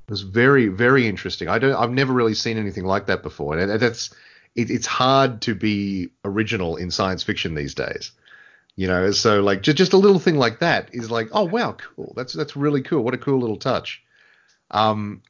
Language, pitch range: English, 100-135 Hz